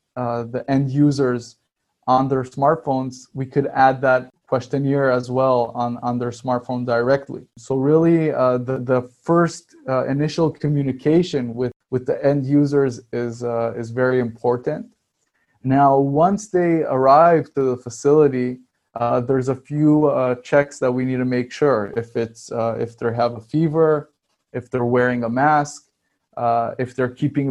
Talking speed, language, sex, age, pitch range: 160 wpm, English, male, 20-39, 120-140 Hz